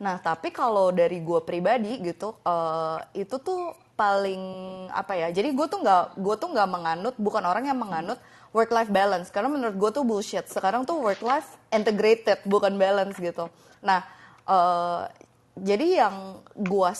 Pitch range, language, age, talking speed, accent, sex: 180-225 Hz, Indonesian, 20-39, 155 wpm, native, female